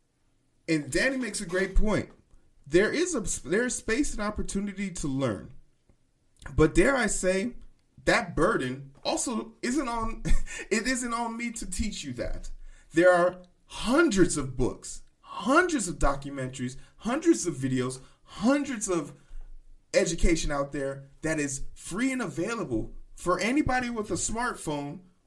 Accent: American